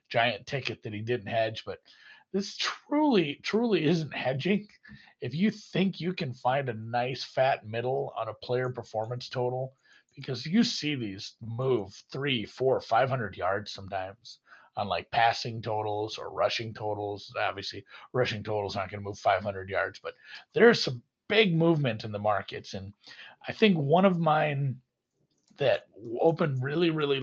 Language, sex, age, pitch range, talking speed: English, male, 40-59, 115-160 Hz, 160 wpm